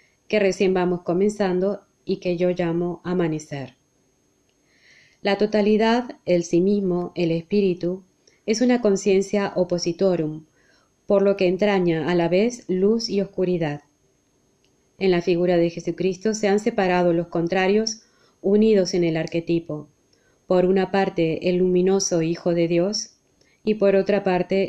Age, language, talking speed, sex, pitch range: 20-39, Spanish, 135 wpm, female, 170-200 Hz